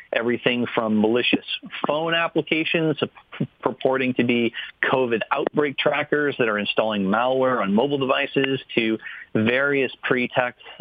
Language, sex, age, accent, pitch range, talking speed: English, male, 40-59, American, 110-135 Hz, 115 wpm